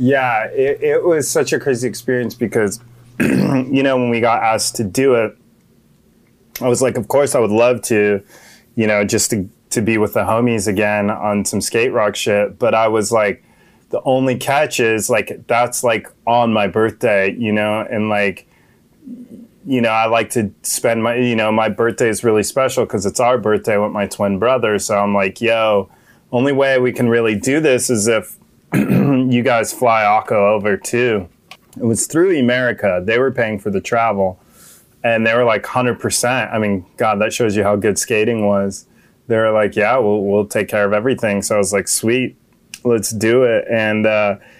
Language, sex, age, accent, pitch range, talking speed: English, male, 20-39, American, 105-125 Hz, 195 wpm